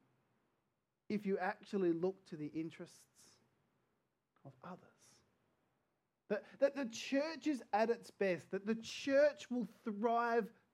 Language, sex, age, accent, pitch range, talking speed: English, male, 30-49, Australian, 180-235 Hz, 125 wpm